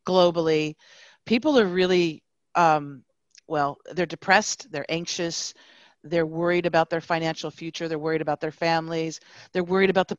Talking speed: 145 wpm